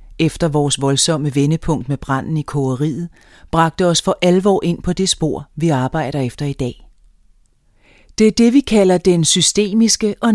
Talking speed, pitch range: 170 wpm, 145-185 Hz